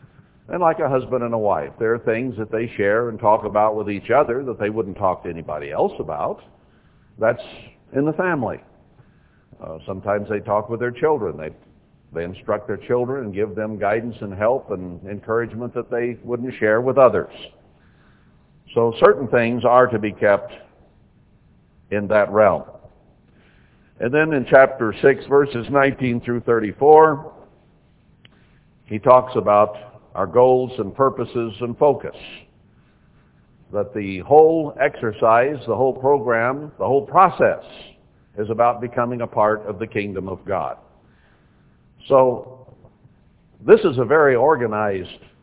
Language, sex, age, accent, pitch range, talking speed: English, male, 60-79, American, 105-130 Hz, 145 wpm